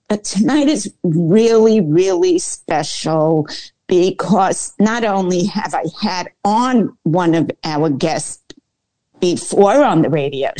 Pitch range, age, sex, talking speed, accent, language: 170-225 Hz, 50-69, female, 120 wpm, American, English